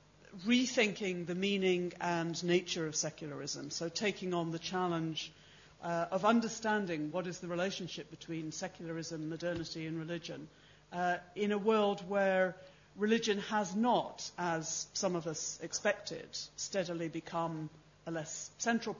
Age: 50-69